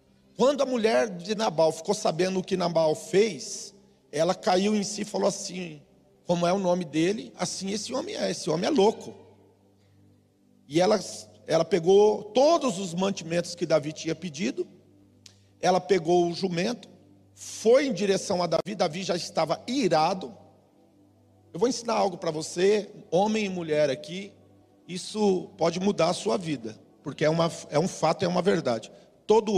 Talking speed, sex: 160 wpm, male